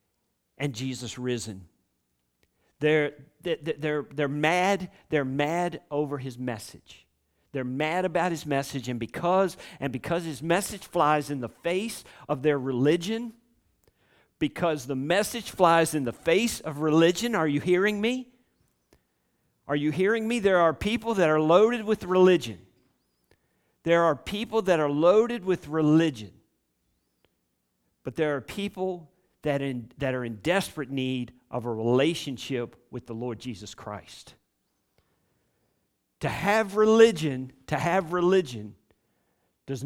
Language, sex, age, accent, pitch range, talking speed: English, male, 50-69, American, 125-180 Hz, 130 wpm